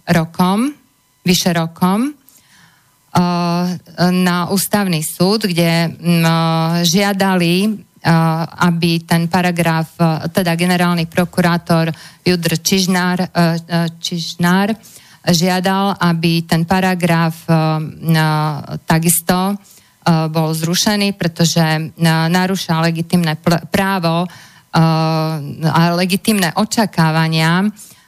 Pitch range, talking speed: 165-190 Hz, 65 wpm